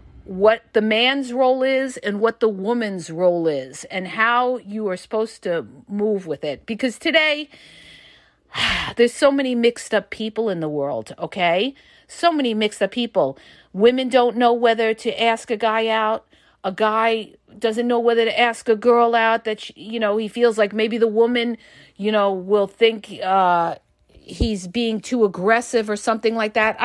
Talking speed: 175 wpm